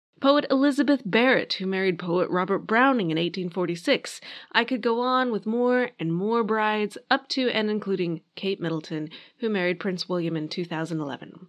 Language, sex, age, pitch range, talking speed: English, female, 30-49, 175-245 Hz, 160 wpm